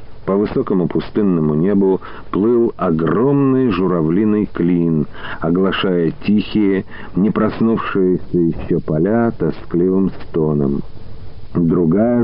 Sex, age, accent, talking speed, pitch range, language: male, 50-69, native, 85 wpm, 90-115 Hz, Russian